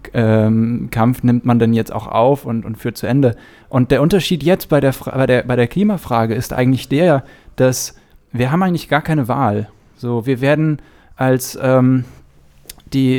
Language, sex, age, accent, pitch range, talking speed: German, male, 20-39, German, 120-140 Hz, 180 wpm